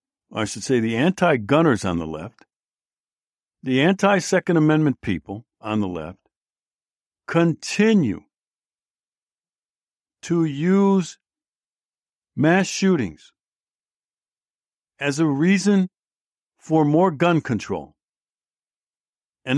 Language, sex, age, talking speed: English, male, 60-79, 85 wpm